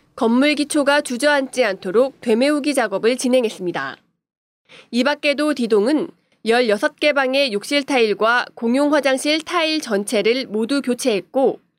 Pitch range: 230-305 Hz